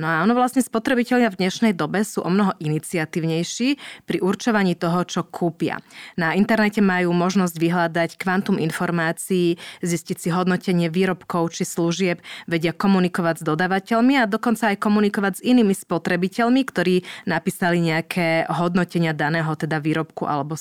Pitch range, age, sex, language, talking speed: 170-210 Hz, 20-39, female, Slovak, 145 wpm